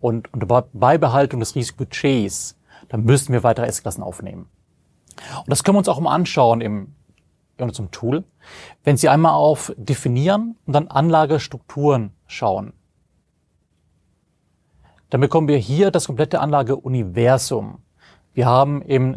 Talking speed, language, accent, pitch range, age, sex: 135 wpm, German, German, 120-155 Hz, 30-49, male